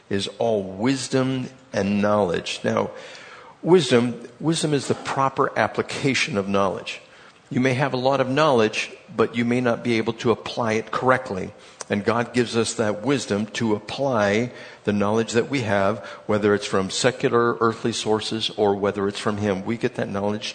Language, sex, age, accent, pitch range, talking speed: English, male, 60-79, American, 100-125 Hz, 170 wpm